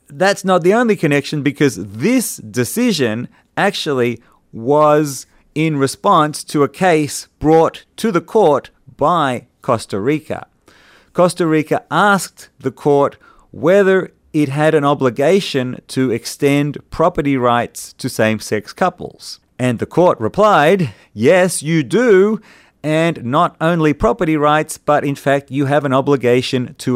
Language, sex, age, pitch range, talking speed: English, male, 30-49, 130-170 Hz, 130 wpm